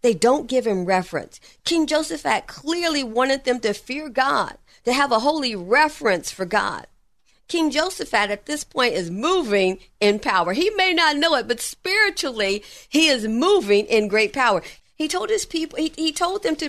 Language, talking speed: English, 185 wpm